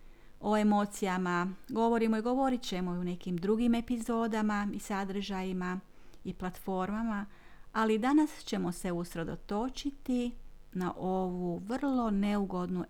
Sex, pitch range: female, 185-250 Hz